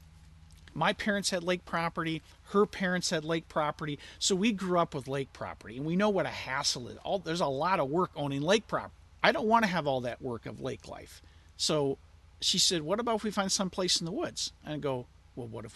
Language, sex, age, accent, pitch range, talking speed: English, male, 50-69, American, 125-165 Hz, 240 wpm